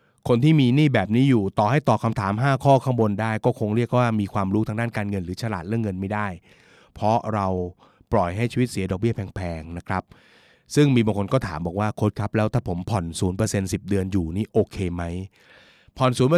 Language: Thai